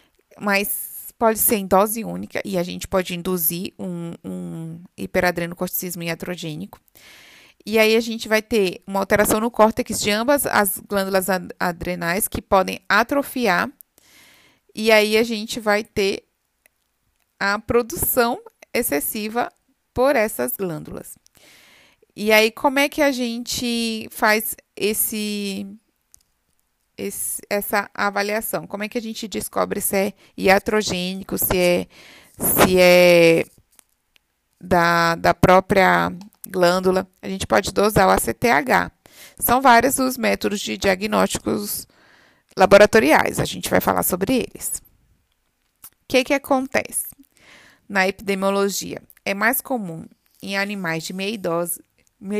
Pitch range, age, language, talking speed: 180-225 Hz, 20-39, Portuguese, 120 wpm